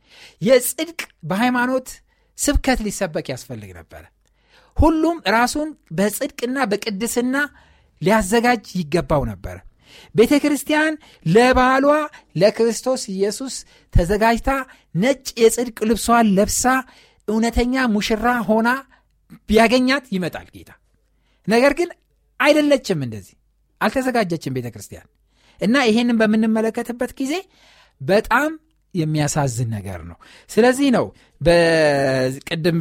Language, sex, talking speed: Amharic, male, 85 wpm